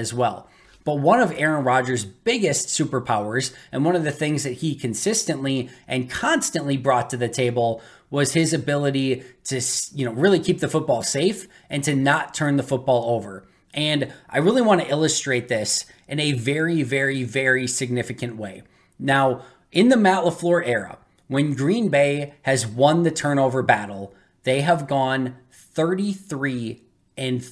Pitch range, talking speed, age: 125-165 Hz, 160 wpm, 20-39